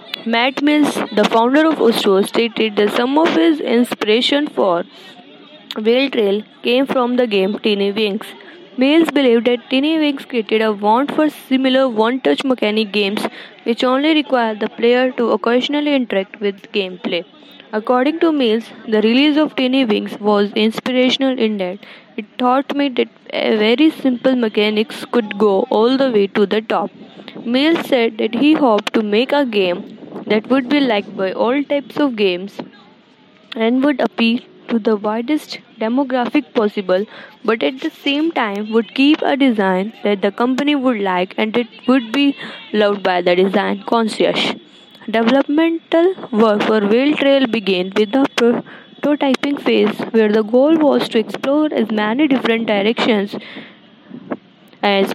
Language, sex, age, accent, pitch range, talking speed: English, female, 20-39, Indian, 215-270 Hz, 155 wpm